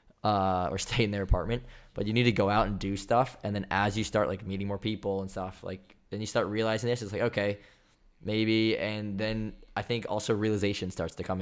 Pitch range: 95-110 Hz